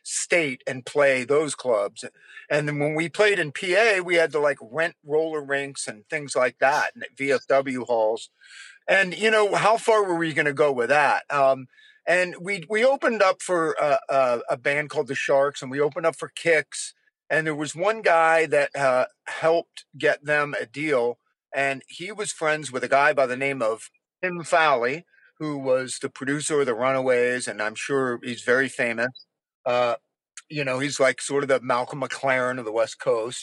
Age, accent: 50-69, American